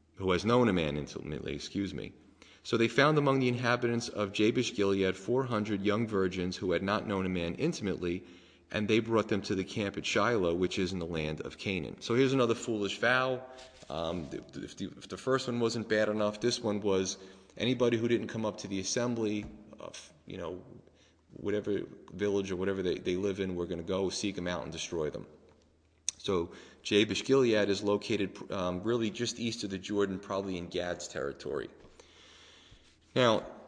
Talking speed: 185 wpm